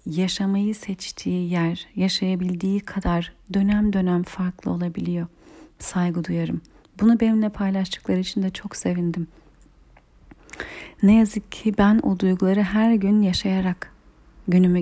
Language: Turkish